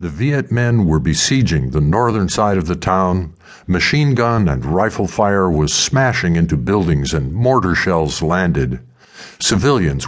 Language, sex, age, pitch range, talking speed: English, male, 60-79, 80-110 Hz, 150 wpm